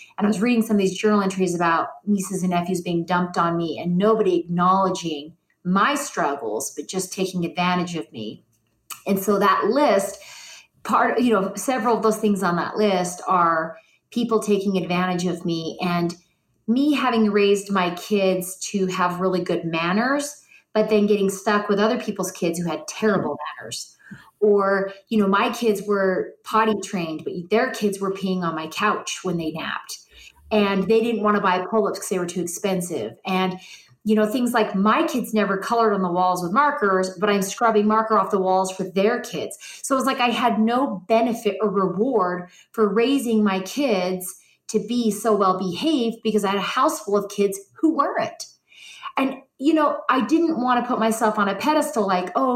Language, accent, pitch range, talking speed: English, American, 185-225 Hz, 190 wpm